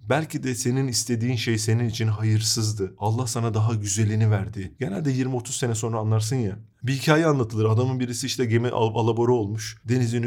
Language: Turkish